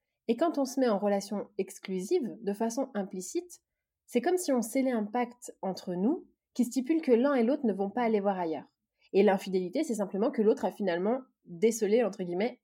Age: 20-39